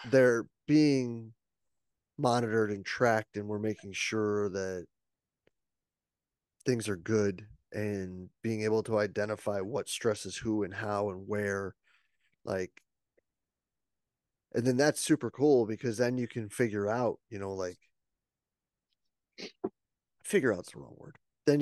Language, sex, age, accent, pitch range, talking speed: English, male, 30-49, American, 105-130 Hz, 130 wpm